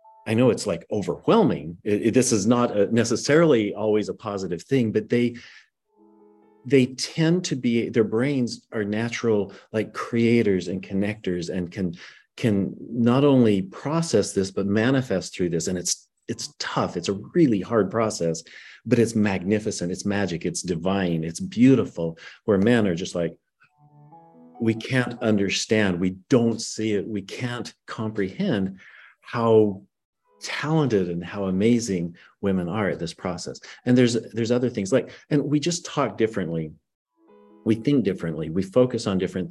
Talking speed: 150 wpm